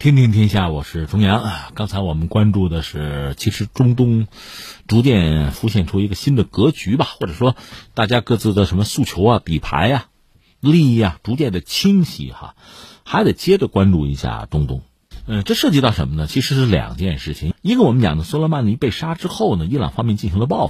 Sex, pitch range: male, 90-150 Hz